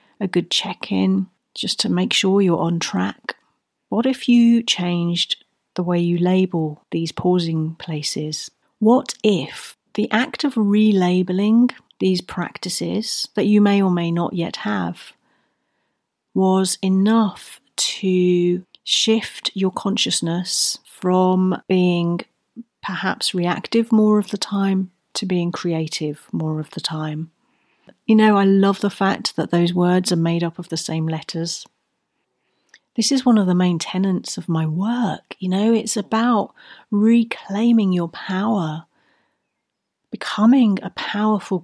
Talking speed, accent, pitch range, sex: 135 wpm, British, 175-215 Hz, female